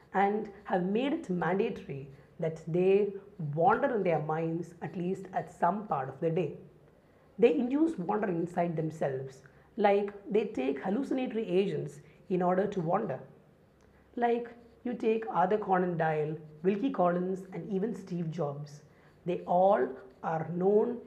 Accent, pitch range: Indian, 160-210 Hz